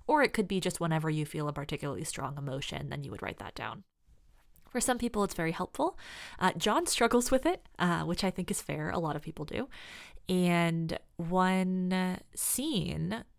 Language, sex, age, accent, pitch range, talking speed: English, female, 20-39, American, 160-220 Hz, 195 wpm